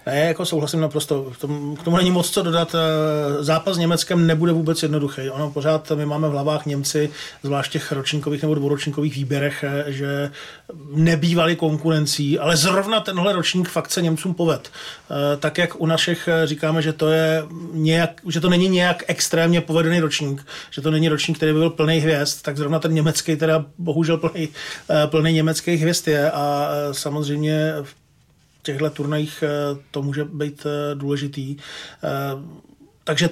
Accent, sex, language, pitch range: native, male, Czech, 145-160 Hz